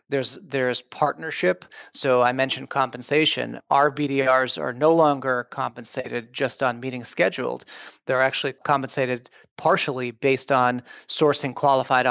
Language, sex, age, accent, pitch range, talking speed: English, male, 40-59, American, 125-145 Hz, 125 wpm